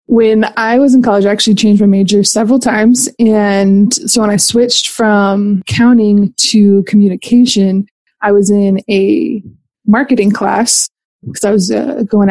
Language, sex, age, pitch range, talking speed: English, female, 20-39, 200-230 Hz, 155 wpm